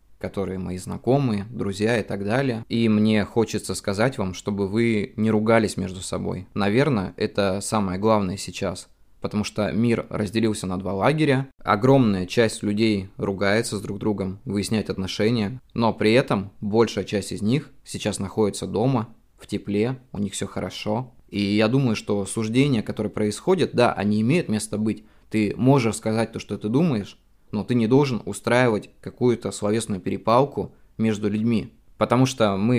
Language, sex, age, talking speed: Russian, male, 20-39, 160 wpm